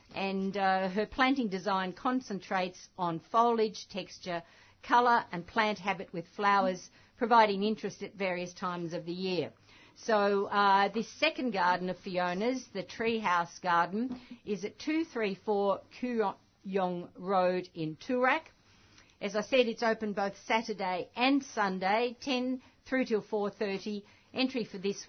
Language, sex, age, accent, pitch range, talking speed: English, female, 50-69, Australian, 185-230 Hz, 135 wpm